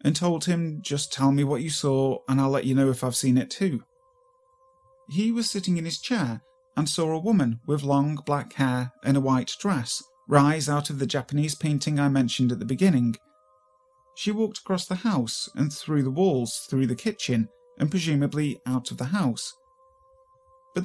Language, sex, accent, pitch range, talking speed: English, male, British, 130-200 Hz, 195 wpm